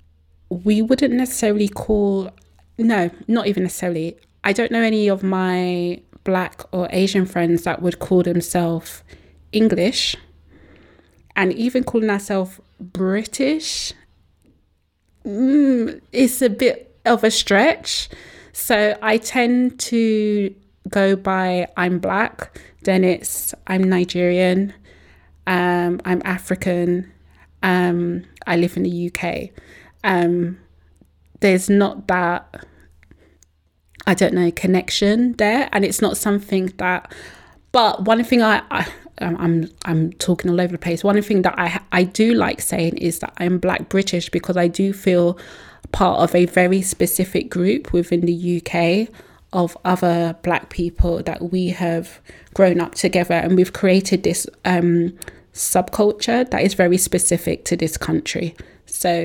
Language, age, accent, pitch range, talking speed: English, 20-39, British, 170-200 Hz, 135 wpm